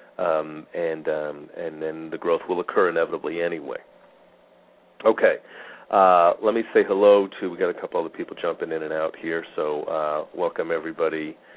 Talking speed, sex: 175 wpm, male